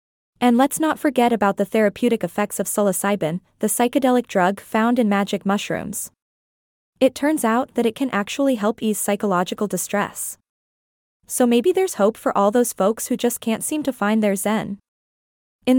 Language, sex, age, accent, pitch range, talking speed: English, female, 20-39, American, 200-250 Hz, 170 wpm